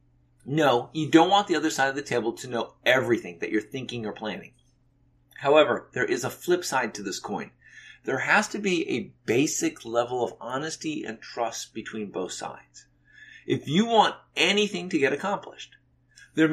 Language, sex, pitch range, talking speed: English, male, 120-165 Hz, 180 wpm